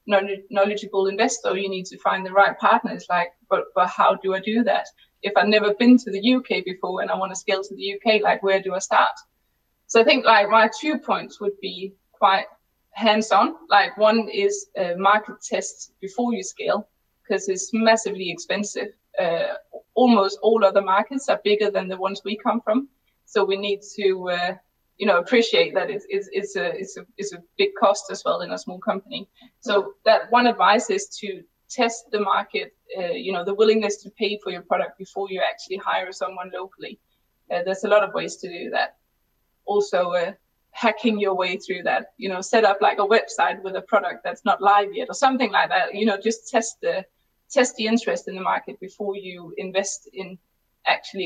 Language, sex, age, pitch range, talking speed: English, female, 20-39, 195-235 Hz, 205 wpm